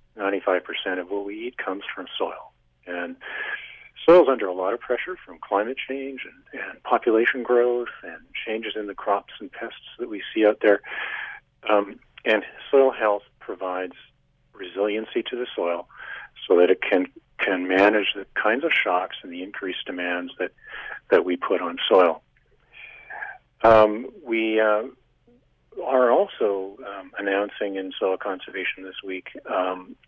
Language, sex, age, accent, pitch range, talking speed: English, male, 40-59, American, 95-130 Hz, 155 wpm